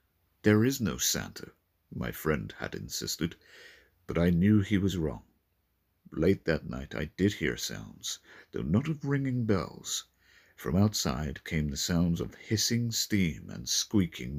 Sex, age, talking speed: male, 50-69, 150 wpm